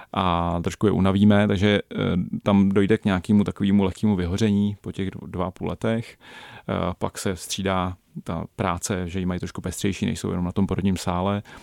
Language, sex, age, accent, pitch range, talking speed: Czech, male, 30-49, native, 90-100 Hz, 165 wpm